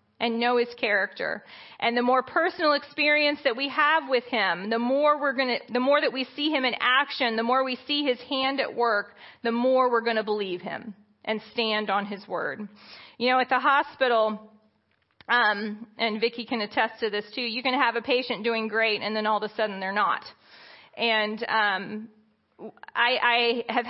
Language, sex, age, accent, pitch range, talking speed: English, female, 40-59, American, 215-255 Hz, 200 wpm